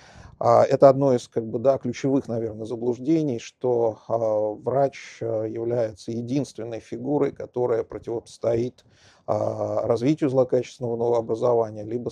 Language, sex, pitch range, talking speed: Russian, male, 115-135 Hz, 100 wpm